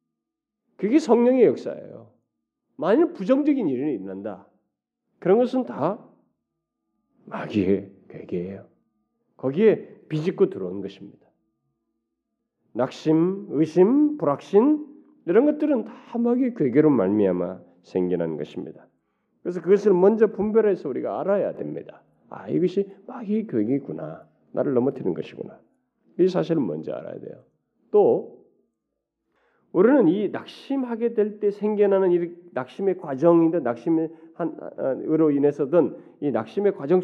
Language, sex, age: Korean, male, 40-59